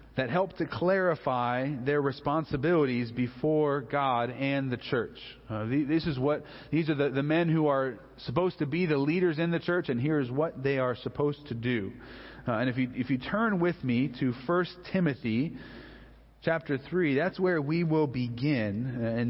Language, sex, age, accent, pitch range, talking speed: English, male, 40-59, American, 130-165 Hz, 185 wpm